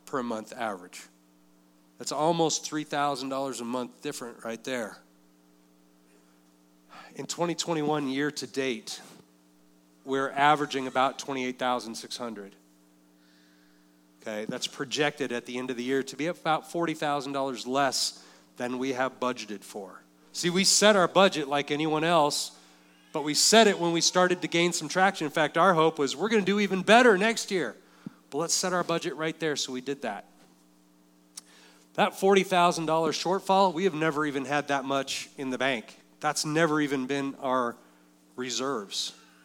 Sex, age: male, 40-59